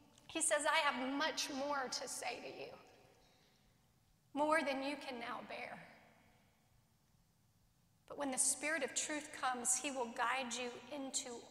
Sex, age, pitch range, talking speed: female, 40-59, 245-290 Hz, 145 wpm